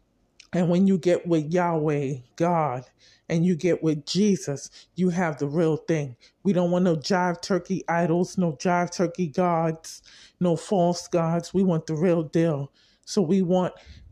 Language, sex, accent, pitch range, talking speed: English, male, American, 160-185 Hz, 165 wpm